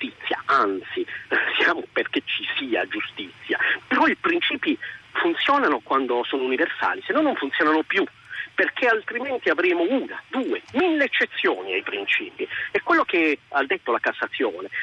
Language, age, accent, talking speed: Italian, 40-59, native, 140 wpm